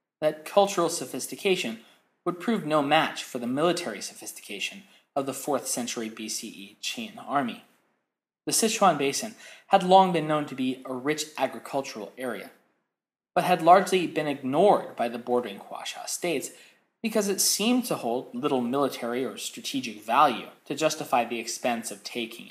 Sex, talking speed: male, 150 wpm